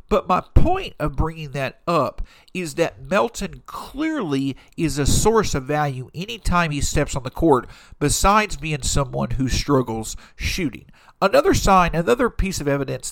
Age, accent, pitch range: 50-69, American, 130-180 Hz